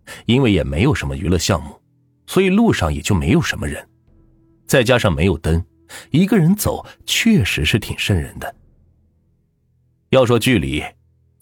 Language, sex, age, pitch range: Chinese, male, 30-49, 85-120 Hz